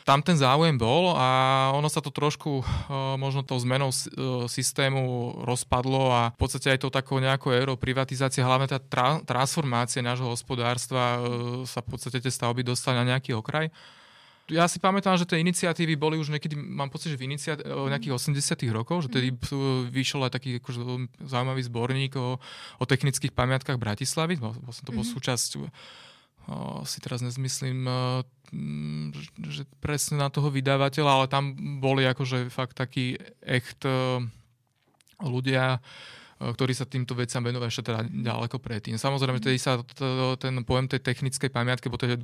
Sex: male